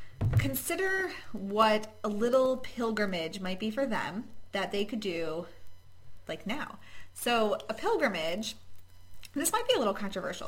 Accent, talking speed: American, 135 wpm